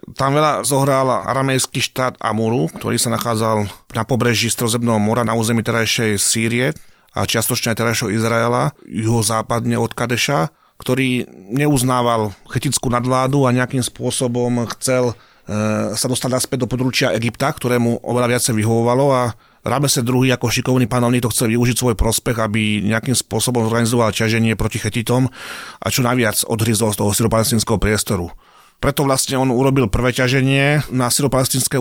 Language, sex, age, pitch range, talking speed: Slovak, male, 30-49, 115-135 Hz, 145 wpm